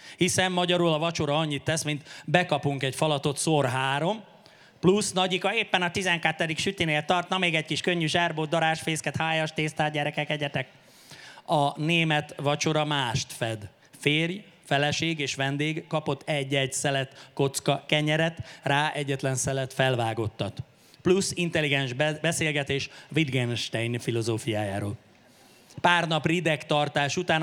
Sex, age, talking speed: male, 30-49, 125 wpm